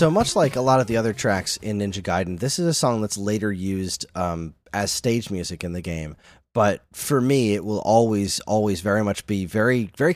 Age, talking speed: 20-39, 225 wpm